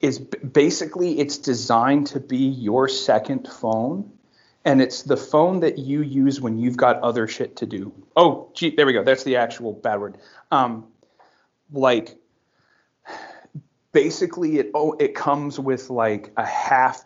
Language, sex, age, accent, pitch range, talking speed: English, male, 30-49, American, 115-145 Hz, 155 wpm